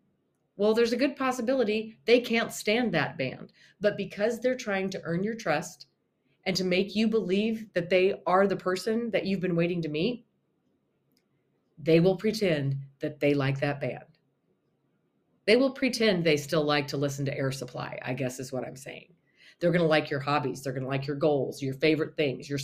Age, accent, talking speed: 30-49, American, 200 wpm